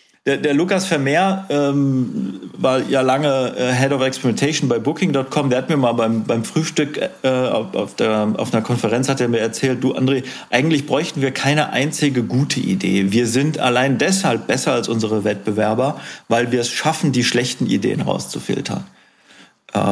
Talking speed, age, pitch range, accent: 160 wpm, 40-59, 115-140 Hz, German